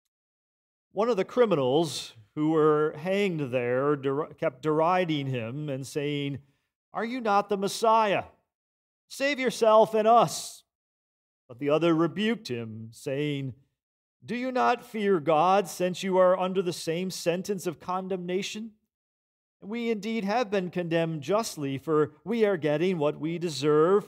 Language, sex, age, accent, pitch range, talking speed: English, male, 40-59, American, 130-185 Hz, 135 wpm